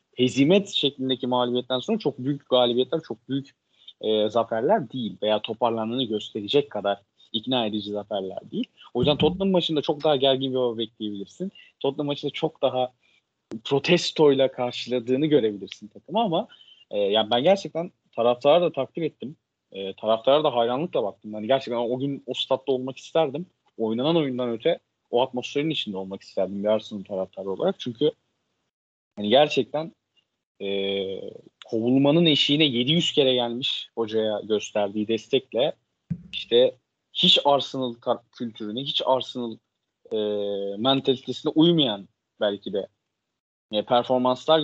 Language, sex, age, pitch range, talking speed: Turkish, male, 40-59, 110-145 Hz, 130 wpm